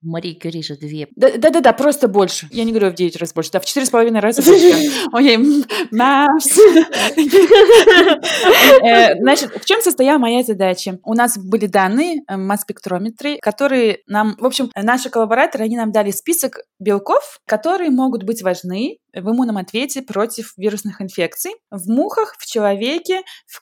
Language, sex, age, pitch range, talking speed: Russian, female, 20-39, 200-275 Hz, 150 wpm